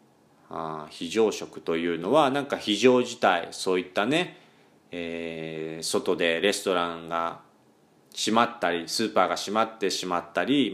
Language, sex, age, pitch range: Japanese, male, 40-59, 85-110 Hz